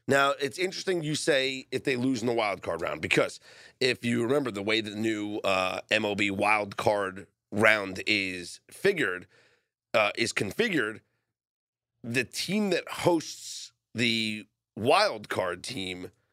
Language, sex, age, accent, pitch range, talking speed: English, male, 30-49, American, 115-150 Hz, 145 wpm